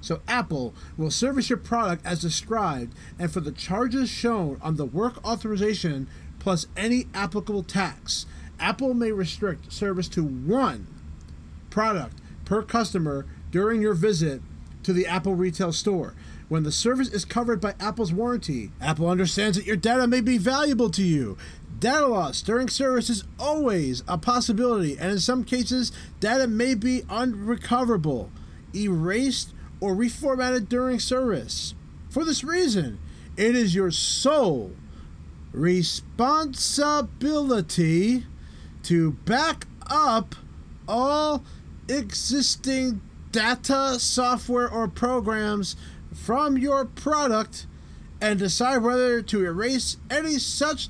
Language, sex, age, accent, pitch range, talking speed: English, male, 30-49, American, 165-245 Hz, 125 wpm